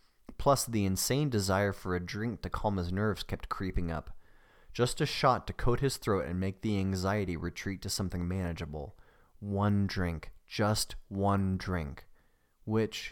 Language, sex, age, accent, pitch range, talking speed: English, male, 30-49, American, 90-110 Hz, 160 wpm